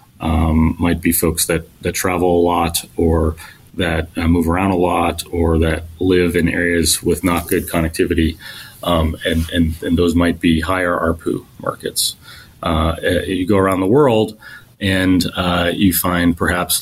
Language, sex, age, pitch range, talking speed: English, male, 30-49, 85-95 Hz, 165 wpm